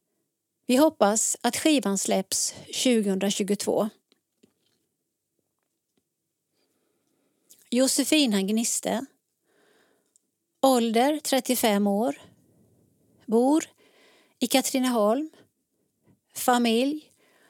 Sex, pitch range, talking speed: female, 210-265 Hz, 50 wpm